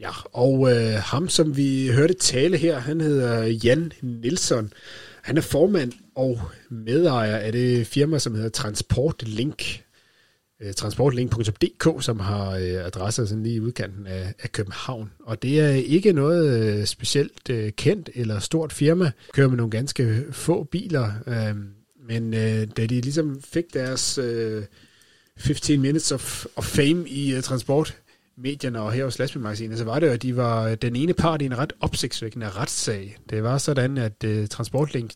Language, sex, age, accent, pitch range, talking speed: Danish, male, 30-49, native, 110-145 Hz, 160 wpm